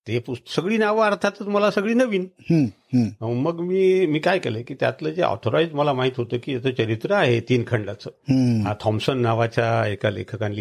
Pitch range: 120-185 Hz